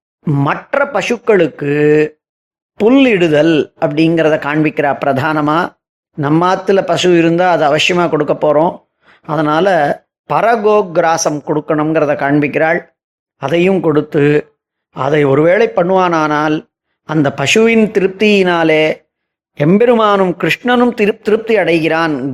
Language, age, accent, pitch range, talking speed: Tamil, 30-49, native, 150-190 Hz, 85 wpm